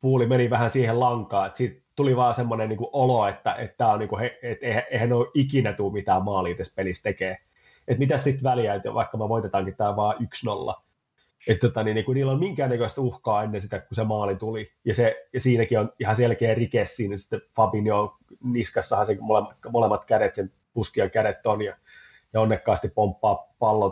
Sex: male